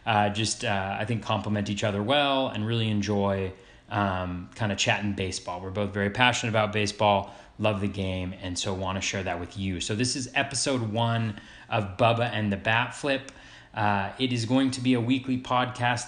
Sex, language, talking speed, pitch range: male, English, 200 wpm, 100-120 Hz